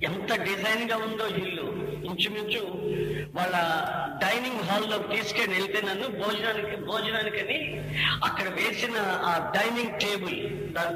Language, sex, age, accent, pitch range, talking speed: Telugu, female, 50-69, native, 160-225 Hz, 110 wpm